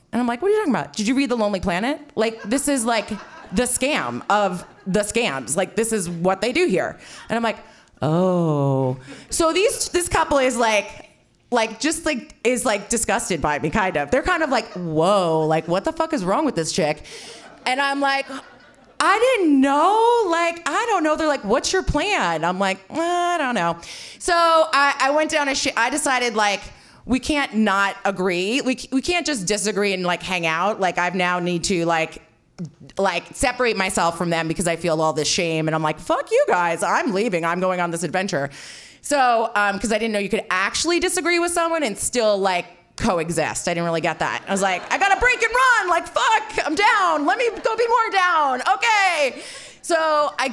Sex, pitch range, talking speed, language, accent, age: female, 185-305 Hz, 215 wpm, English, American, 20-39